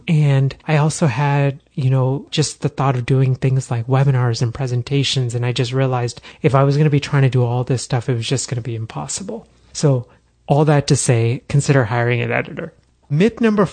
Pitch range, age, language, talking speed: 120-145 Hz, 30-49, English, 220 wpm